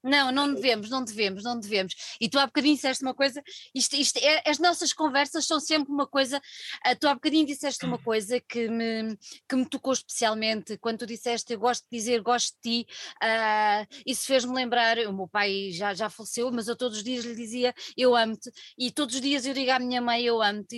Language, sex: Portuguese, female